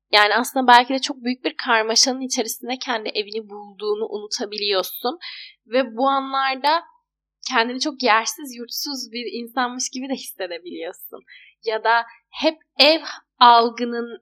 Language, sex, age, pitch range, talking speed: Turkish, female, 10-29, 215-265 Hz, 125 wpm